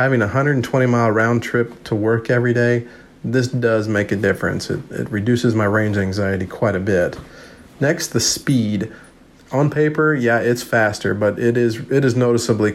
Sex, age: male, 40-59